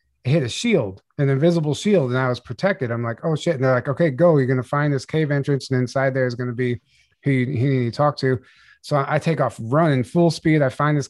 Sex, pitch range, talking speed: male, 125-150 Hz, 265 wpm